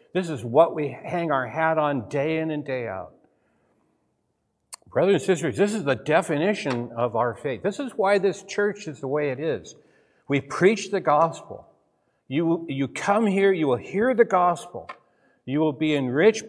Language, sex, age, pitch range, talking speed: English, male, 60-79, 115-170 Hz, 180 wpm